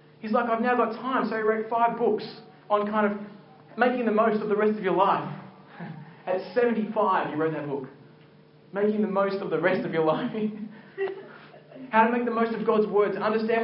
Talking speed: 205 wpm